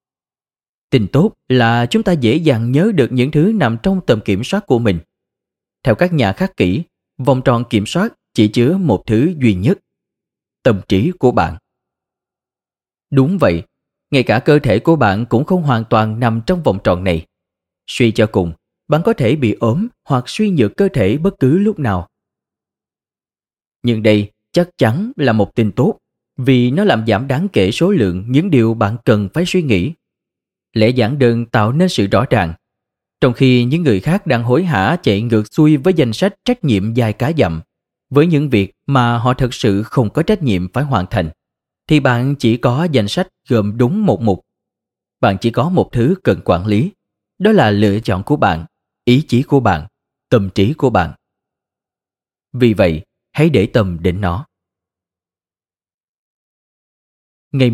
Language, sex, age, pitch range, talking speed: Vietnamese, male, 20-39, 105-150 Hz, 180 wpm